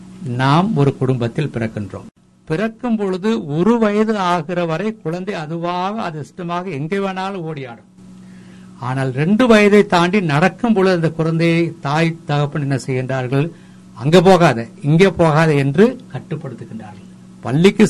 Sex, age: male, 60-79